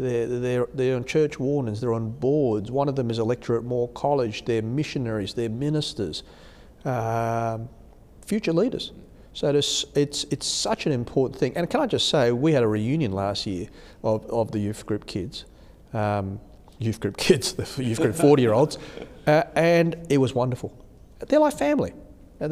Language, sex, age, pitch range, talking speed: English, male, 40-59, 105-140 Hz, 185 wpm